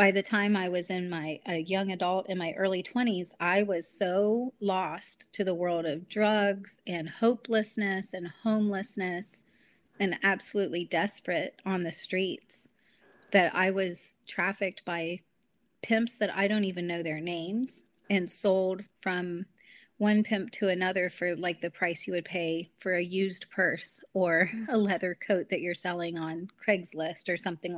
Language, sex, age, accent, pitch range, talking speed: English, female, 30-49, American, 175-210 Hz, 160 wpm